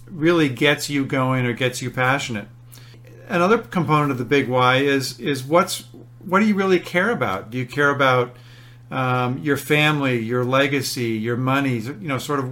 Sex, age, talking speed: male, 50-69, 180 wpm